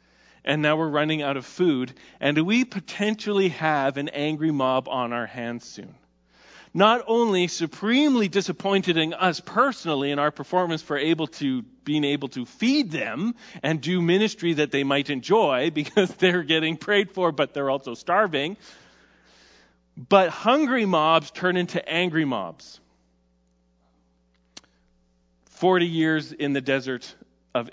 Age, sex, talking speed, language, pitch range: 40-59, male, 140 wpm, English, 135-195 Hz